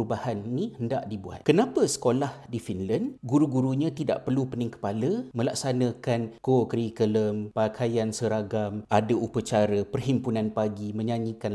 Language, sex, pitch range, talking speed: Malay, male, 105-140 Hz, 120 wpm